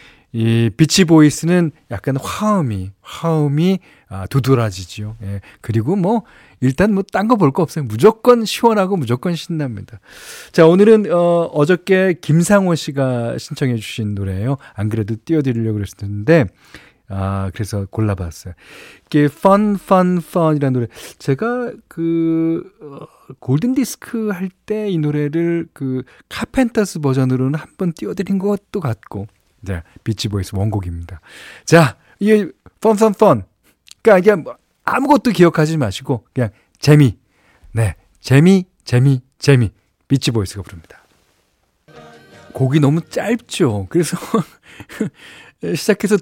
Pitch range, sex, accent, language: 115-175 Hz, male, native, Korean